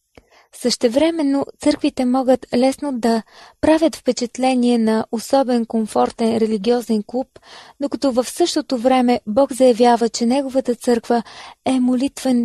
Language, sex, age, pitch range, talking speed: Bulgarian, female, 20-39, 225-255 Hz, 110 wpm